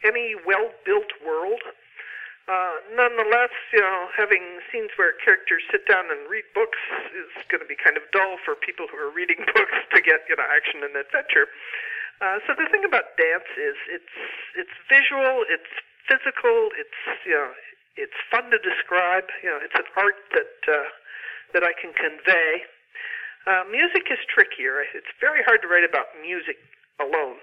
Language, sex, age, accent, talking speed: English, male, 50-69, American, 170 wpm